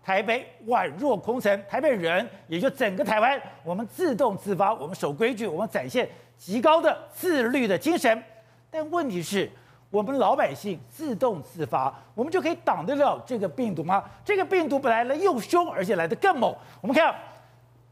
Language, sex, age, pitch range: Chinese, male, 50-69, 185-305 Hz